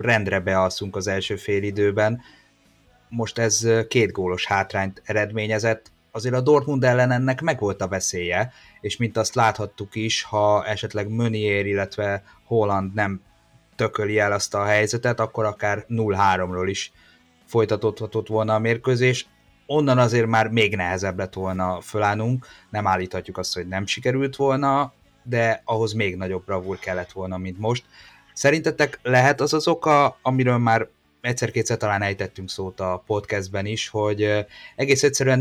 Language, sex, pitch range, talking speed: Hungarian, male, 95-115 Hz, 140 wpm